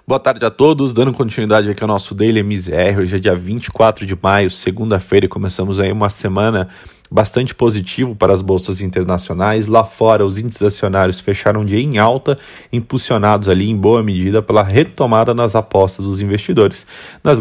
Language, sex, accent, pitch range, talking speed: Portuguese, male, Brazilian, 95-120 Hz, 175 wpm